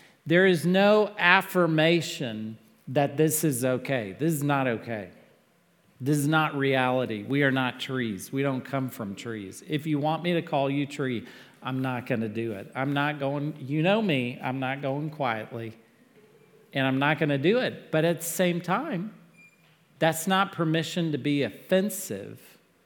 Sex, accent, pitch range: male, American, 135-175 Hz